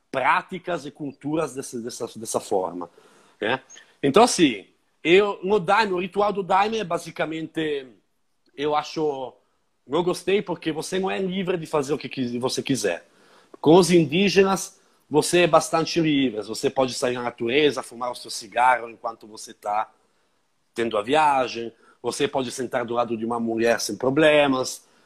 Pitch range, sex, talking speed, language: 130-170 Hz, male, 160 wpm, Portuguese